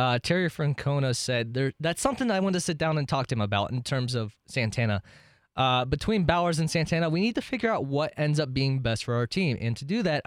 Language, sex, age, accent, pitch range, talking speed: English, male, 20-39, American, 125-180 Hz, 255 wpm